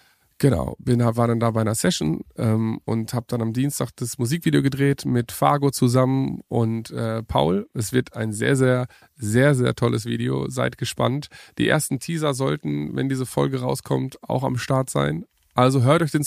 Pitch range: 115-145 Hz